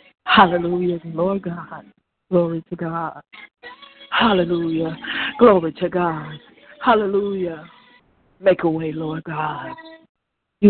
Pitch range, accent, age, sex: 160-195 Hz, American, 60-79, female